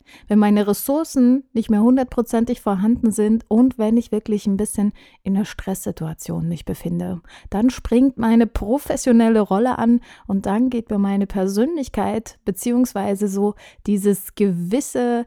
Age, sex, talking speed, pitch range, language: 30-49, female, 140 wpm, 200-235 Hz, German